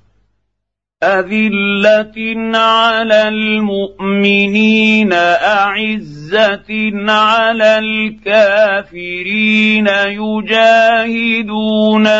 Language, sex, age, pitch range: Arabic, male, 50-69, 165-215 Hz